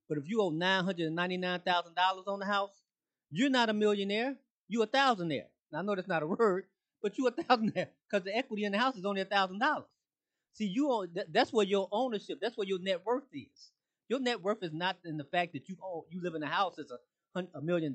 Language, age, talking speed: English, 30-49, 225 wpm